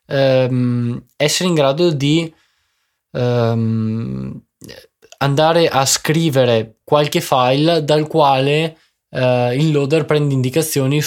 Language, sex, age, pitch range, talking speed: Italian, male, 20-39, 120-145 Hz, 80 wpm